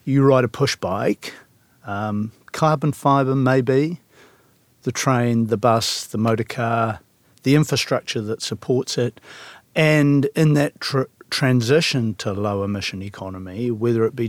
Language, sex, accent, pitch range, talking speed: English, male, Australian, 110-135 Hz, 135 wpm